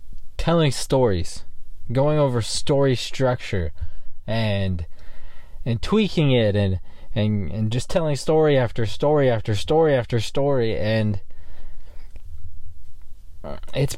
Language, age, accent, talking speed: English, 20-39, American, 105 wpm